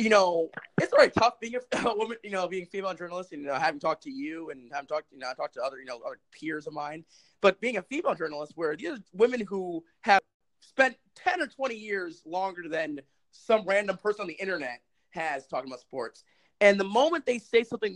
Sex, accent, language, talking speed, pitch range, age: male, American, English, 235 wpm, 150-220 Hz, 30-49